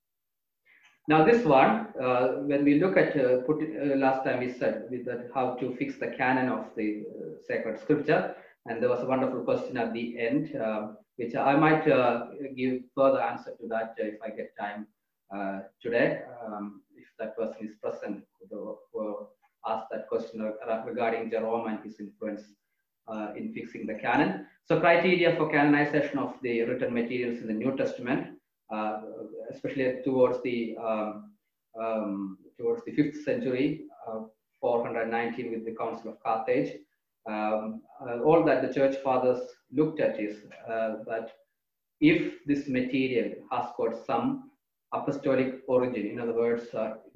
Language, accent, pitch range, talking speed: English, Indian, 110-150 Hz, 160 wpm